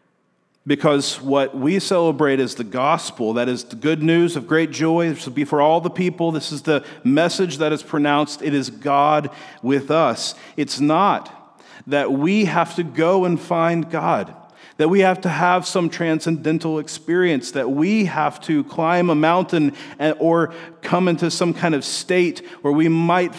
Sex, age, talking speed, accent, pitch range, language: male, 40-59, 175 wpm, American, 125-170 Hz, English